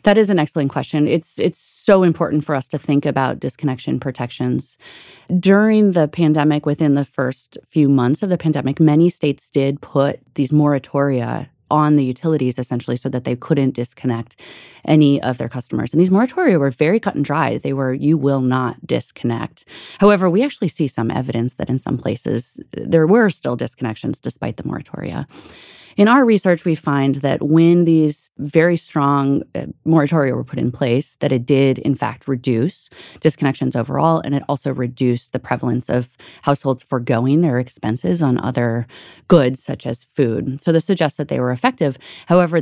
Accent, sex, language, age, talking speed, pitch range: American, female, English, 30-49, 175 wpm, 130-160 Hz